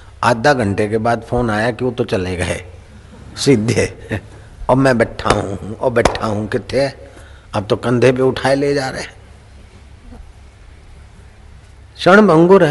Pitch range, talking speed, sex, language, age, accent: 95-125 Hz, 135 wpm, male, Hindi, 50-69, native